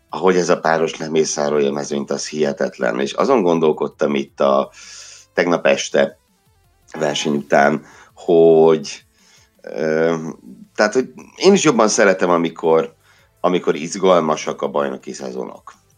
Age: 60-79